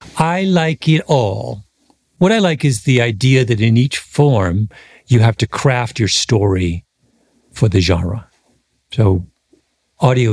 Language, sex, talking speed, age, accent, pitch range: English, male, 145 wpm, 50-69, American, 100-140 Hz